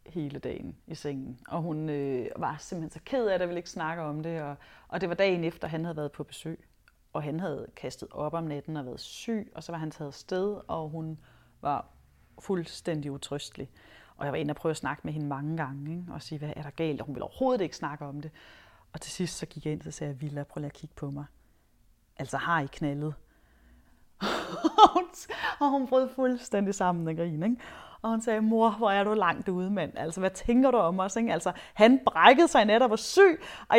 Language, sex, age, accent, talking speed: Danish, female, 30-49, native, 235 wpm